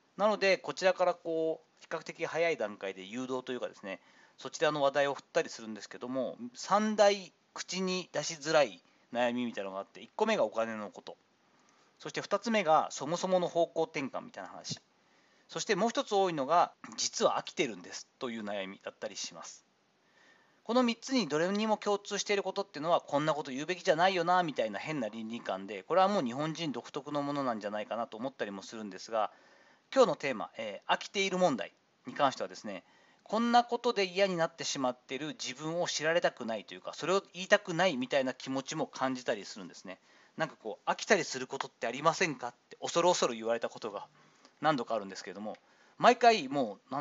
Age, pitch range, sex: 40-59, 135-200 Hz, male